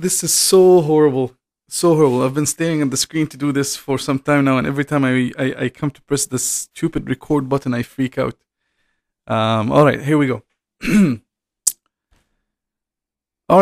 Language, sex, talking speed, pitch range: English, male, 185 wpm, 125-150 Hz